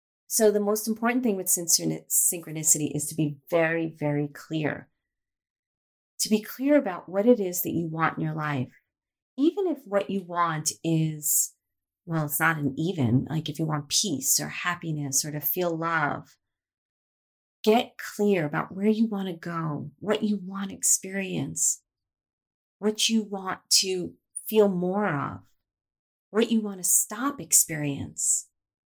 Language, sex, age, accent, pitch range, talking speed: English, female, 30-49, American, 155-215 Hz, 150 wpm